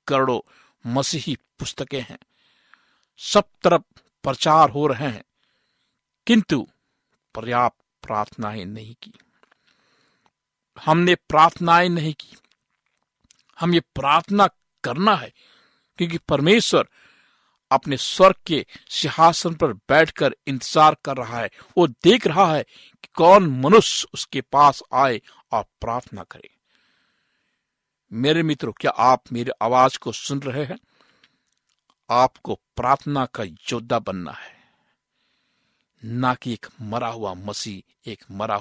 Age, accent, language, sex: 60-79, native, Hindi, male